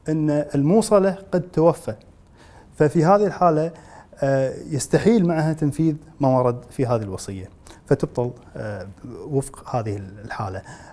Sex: male